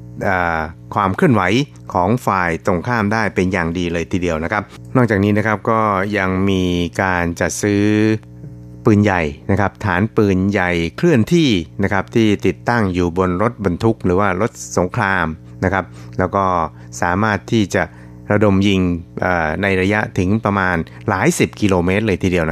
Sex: male